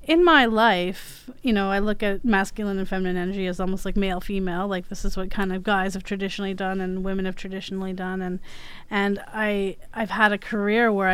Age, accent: 30-49, American